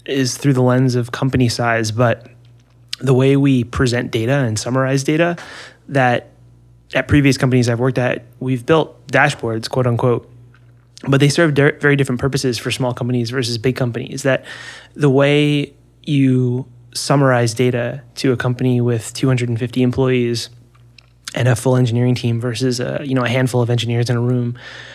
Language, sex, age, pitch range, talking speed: English, male, 20-39, 120-135 Hz, 165 wpm